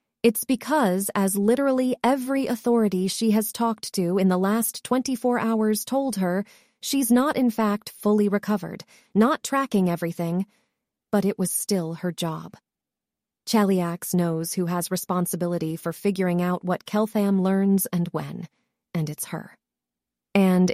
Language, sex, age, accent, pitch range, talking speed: English, female, 30-49, American, 175-225 Hz, 140 wpm